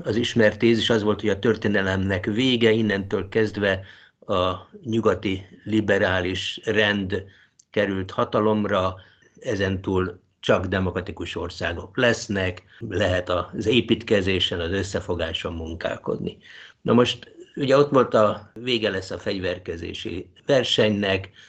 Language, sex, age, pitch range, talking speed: Hungarian, male, 60-79, 95-110 Hz, 105 wpm